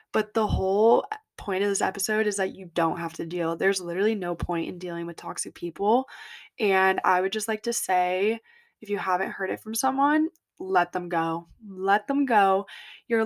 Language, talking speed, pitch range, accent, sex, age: English, 200 wpm, 190-225 Hz, American, female, 20-39